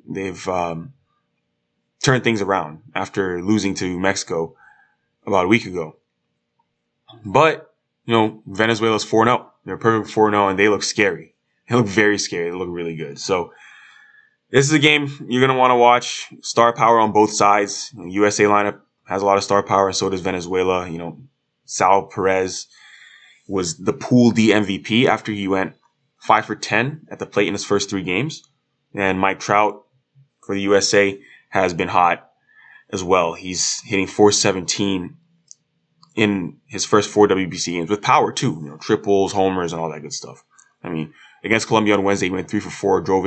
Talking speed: 180 wpm